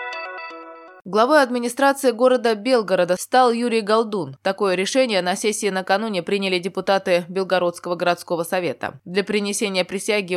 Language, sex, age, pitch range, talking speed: Russian, female, 20-39, 180-220 Hz, 115 wpm